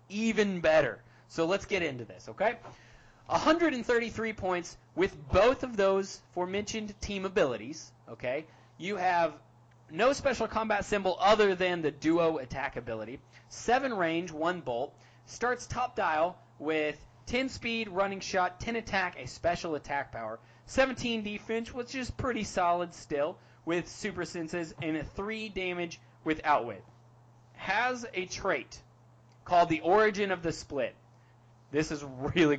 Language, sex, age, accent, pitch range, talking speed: English, male, 30-49, American, 125-210 Hz, 140 wpm